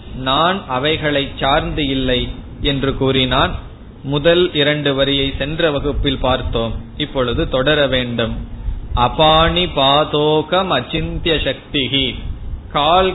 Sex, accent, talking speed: male, native, 90 wpm